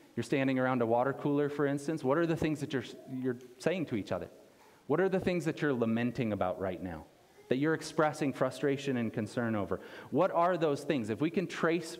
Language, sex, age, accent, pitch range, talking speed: English, male, 30-49, American, 120-150 Hz, 220 wpm